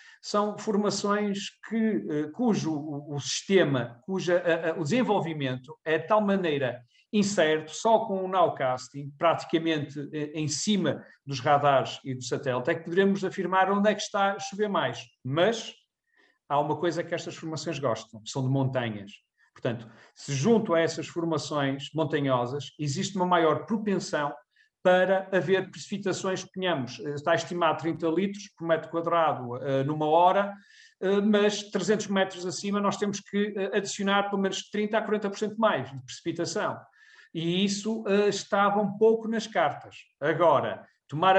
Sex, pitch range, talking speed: male, 155-200 Hz, 150 wpm